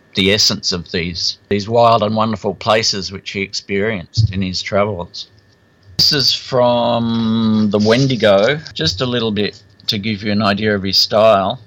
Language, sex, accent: Swedish, male, Australian